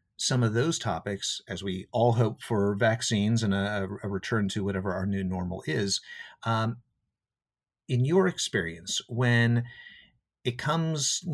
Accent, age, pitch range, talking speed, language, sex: American, 50-69, 100-125 Hz, 145 wpm, English, male